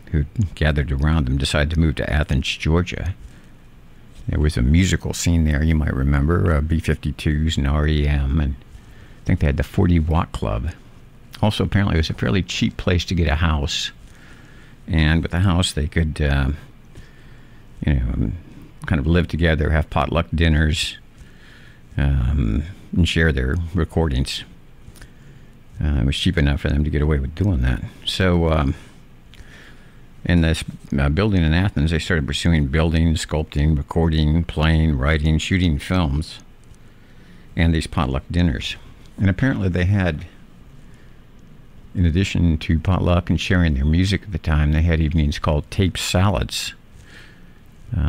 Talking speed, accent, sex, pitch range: 150 wpm, American, male, 75-90 Hz